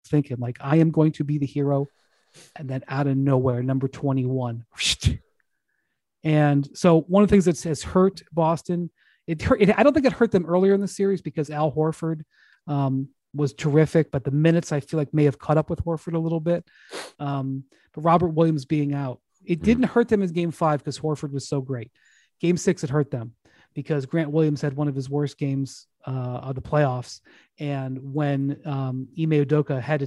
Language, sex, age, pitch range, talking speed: English, male, 30-49, 135-155 Hz, 205 wpm